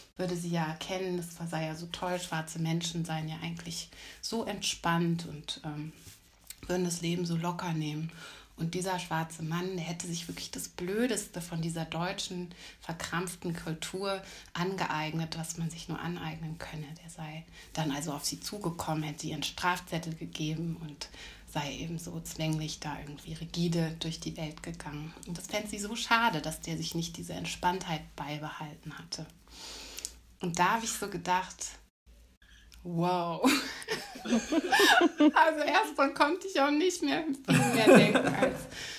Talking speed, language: 155 wpm, German